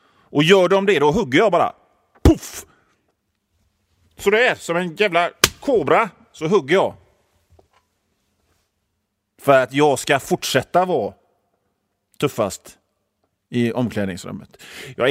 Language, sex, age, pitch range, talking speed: Swedish, male, 30-49, 125-195 Hz, 115 wpm